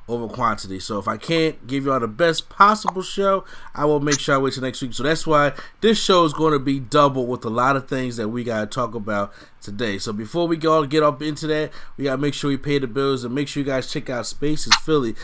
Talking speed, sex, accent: 270 wpm, male, American